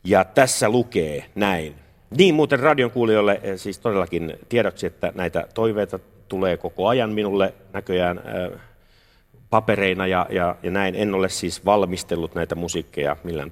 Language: Finnish